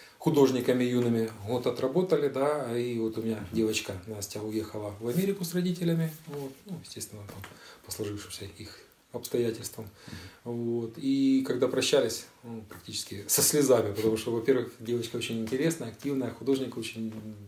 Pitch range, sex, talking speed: 110-155 Hz, male, 140 wpm